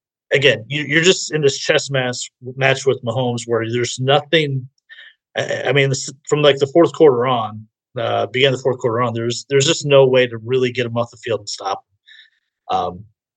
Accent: American